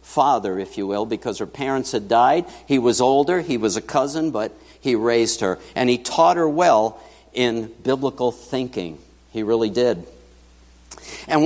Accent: American